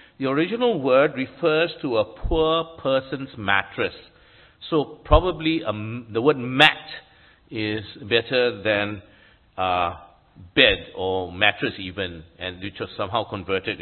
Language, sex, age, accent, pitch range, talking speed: English, male, 50-69, Malaysian, 95-130 Hz, 120 wpm